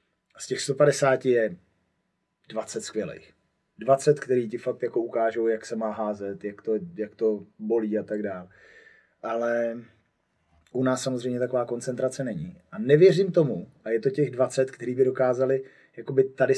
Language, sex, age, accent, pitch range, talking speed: Czech, male, 30-49, native, 110-130 Hz, 150 wpm